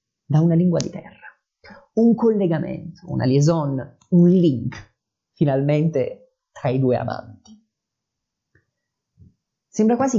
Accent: native